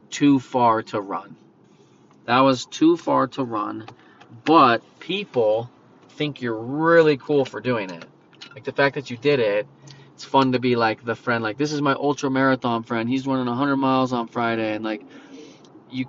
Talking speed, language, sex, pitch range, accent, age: 185 wpm, English, male, 115-140 Hz, American, 30-49